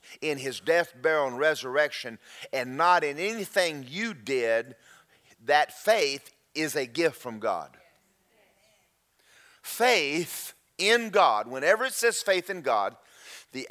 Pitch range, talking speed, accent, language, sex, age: 140-195 Hz, 125 wpm, American, English, male, 40-59